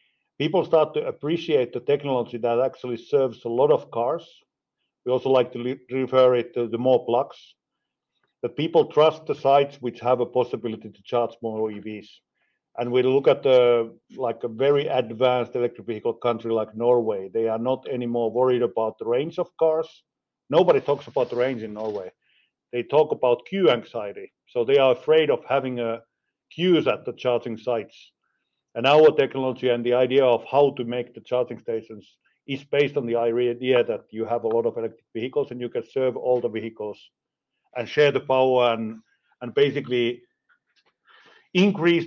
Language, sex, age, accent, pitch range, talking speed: English, male, 50-69, Finnish, 120-140 Hz, 180 wpm